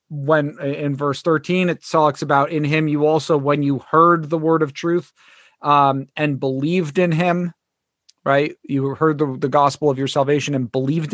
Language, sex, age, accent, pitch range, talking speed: English, male, 40-59, American, 140-165 Hz, 185 wpm